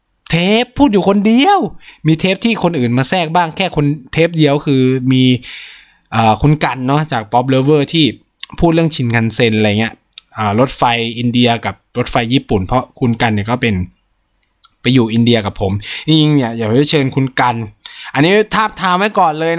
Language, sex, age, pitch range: Thai, male, 20-39, 115-155 Hz